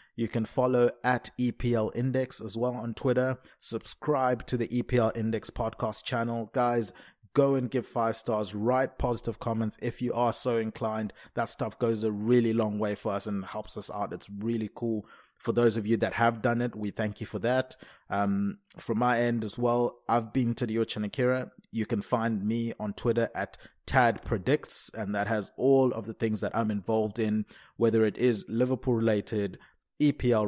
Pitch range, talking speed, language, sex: 110-125 Hz, 190 wpm, English, male